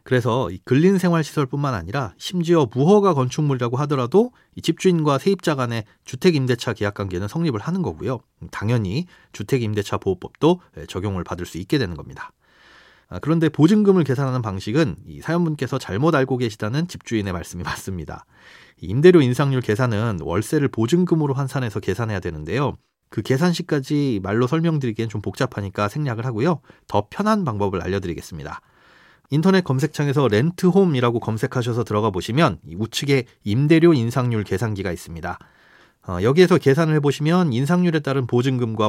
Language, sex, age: Korean, male, 30-49